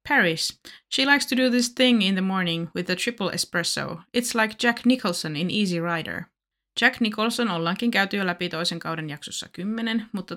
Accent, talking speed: native, 185 wpm